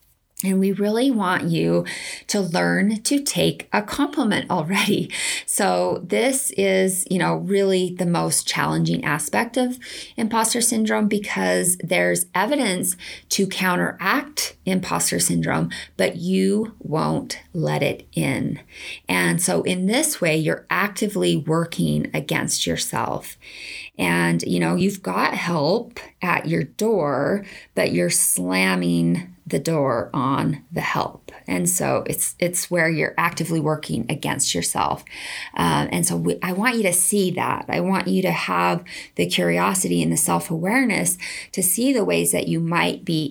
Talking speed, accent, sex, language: 145 wpm, American, female, English